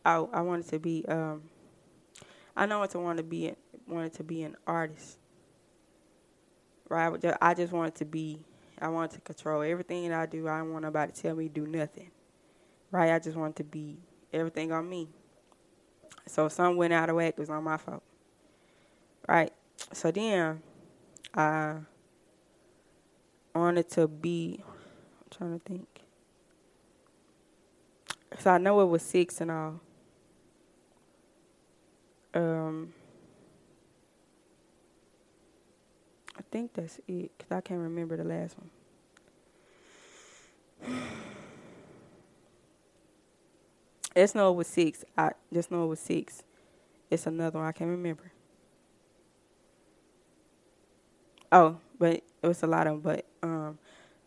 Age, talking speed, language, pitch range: 20-39, 130 wpm, English, 155-175 Hz